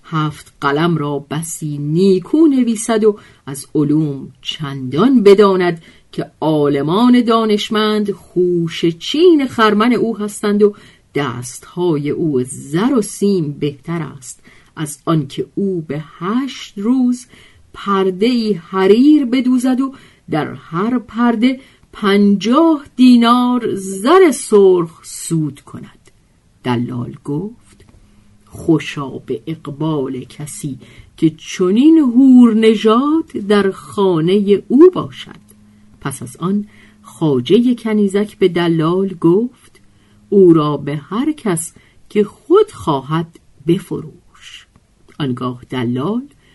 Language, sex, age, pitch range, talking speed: Persian, female, 40-59, 150-235 Hz, 100 wpm